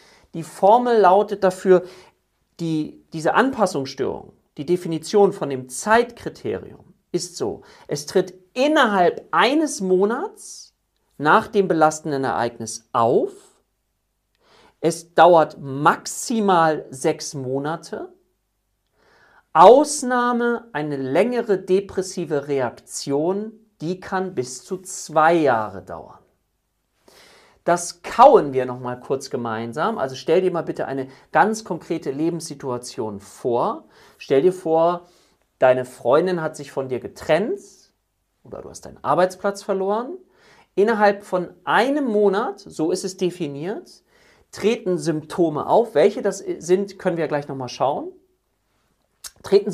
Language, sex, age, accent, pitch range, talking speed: German, male, 50-69, German, 145-205 Hz, 115 wpm